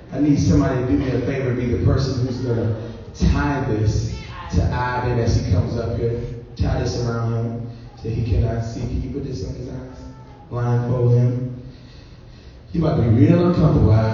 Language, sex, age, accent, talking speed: English, male, 20-39, American, 190 wpm